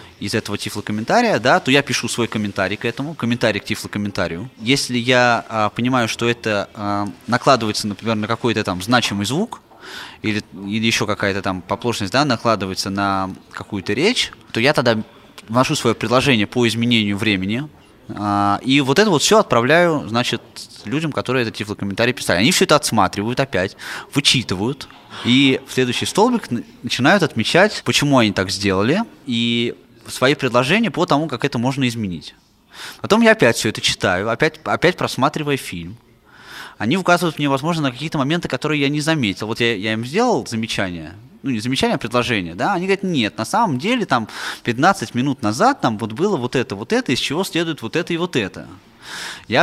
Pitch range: 105-150 Hz